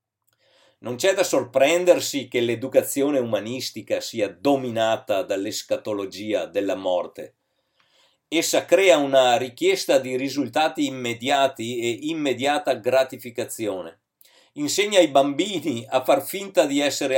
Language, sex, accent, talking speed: Italian, male, native, 105 wpm